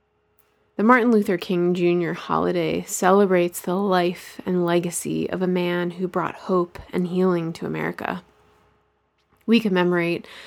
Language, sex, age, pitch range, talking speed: English, female, 20-39, 170-195 Hz, 130 wpm